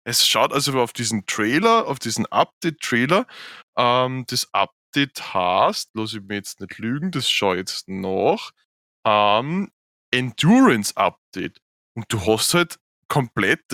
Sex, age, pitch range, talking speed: male, 20-39, 120-170 Hz, 135 wpm